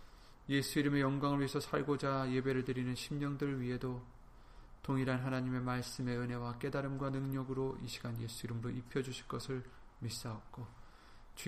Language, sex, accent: Korean, male, native